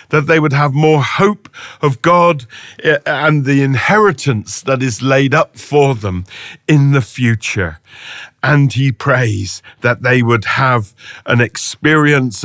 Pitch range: 120-155 Hz